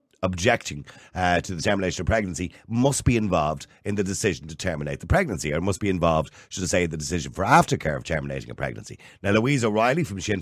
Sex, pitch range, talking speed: male, 95-120 Hz, 215 wpm